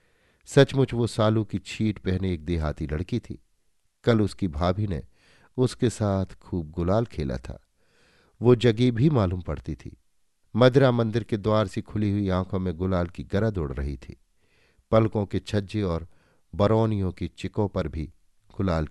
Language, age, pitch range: Hindi, 50-69, 90-120 Hz